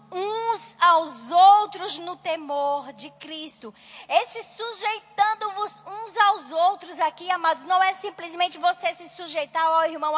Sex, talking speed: female, 130 wpm